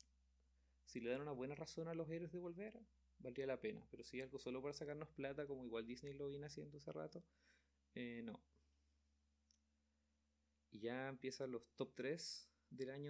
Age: 30-49